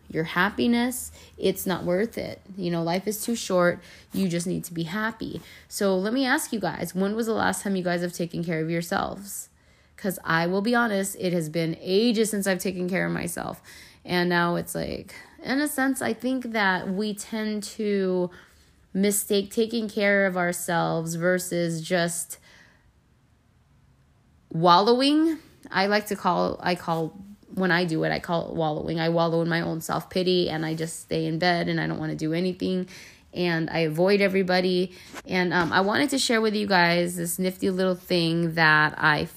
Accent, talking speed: American, 190 wpm